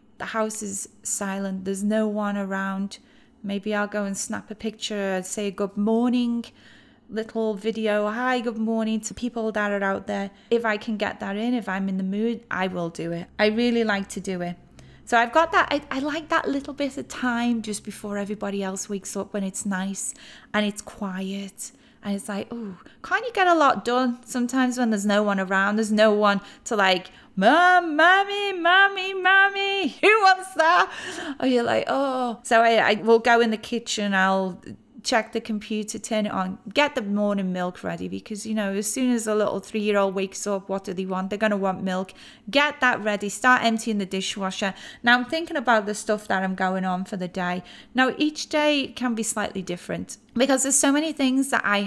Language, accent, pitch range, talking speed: English, British, 200-250 Hz, 210 wpm